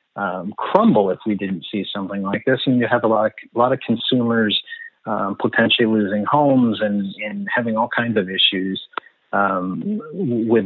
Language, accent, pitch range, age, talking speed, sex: English, American, 105-130 Hz, 40-59, 180 wpm, male